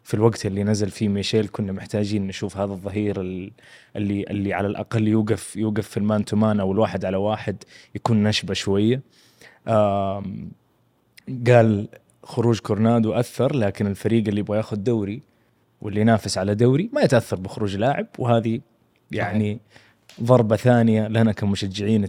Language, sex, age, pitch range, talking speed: Arabic, male, 20-39, 100-120 Hz, 135 wpm